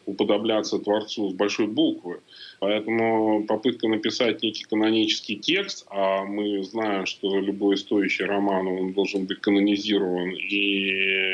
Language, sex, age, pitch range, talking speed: Russian, male, 20-39, 100-120 Hz, 115 wpm